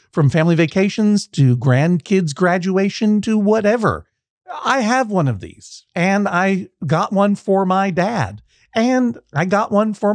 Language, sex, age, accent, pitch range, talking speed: English, male, 50-69, American, 130-195 Hz, 150 wpm